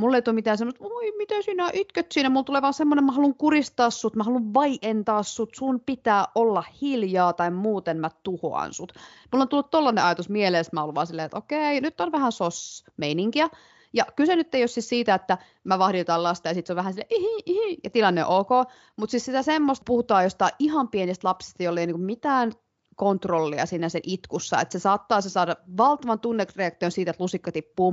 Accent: native